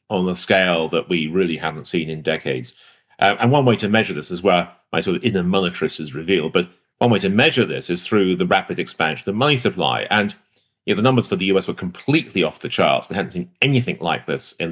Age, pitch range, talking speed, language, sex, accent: 40-59, 85-120 Hz, 250 wpm, English, male, British